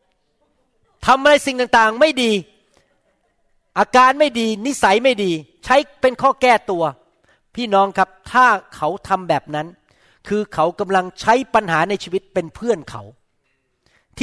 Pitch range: 160-225 Hz